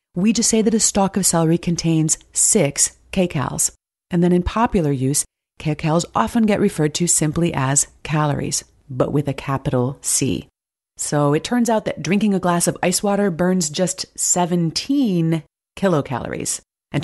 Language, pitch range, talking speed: English, 150-200 Hz, 160 wpm